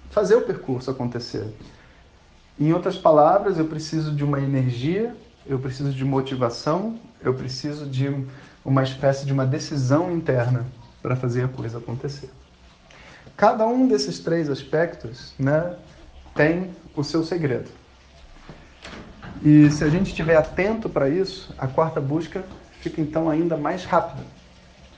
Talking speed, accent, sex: 135 wpm, Brazilian, male